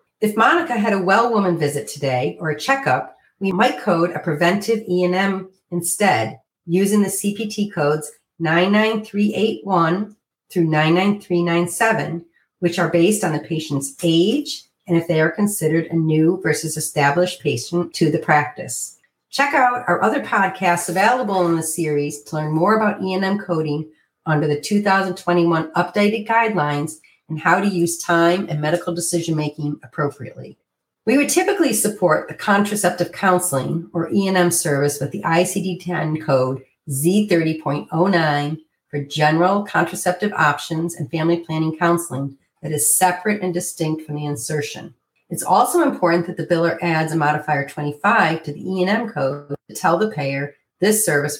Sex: female